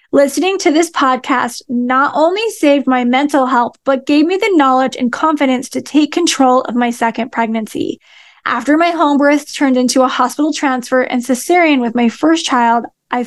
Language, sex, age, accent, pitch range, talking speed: English, female, 10-29, American, 250-295 Hz, 180 wpm